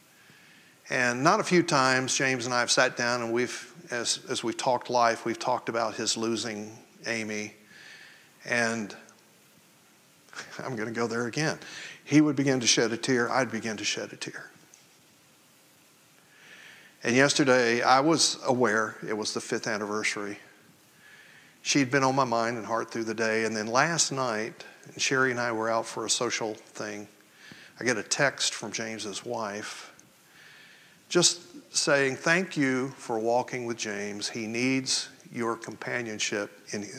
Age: 50-69